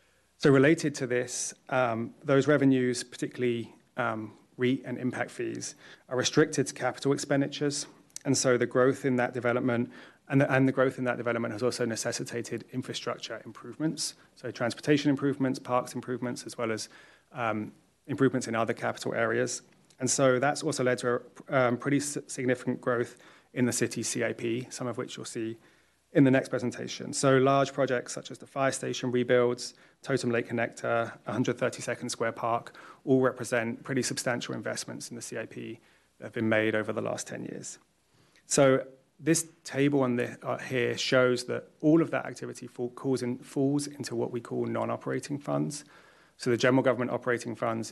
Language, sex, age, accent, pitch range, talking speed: English, male, 30-49, British, 120-135 Hz, 165 wpm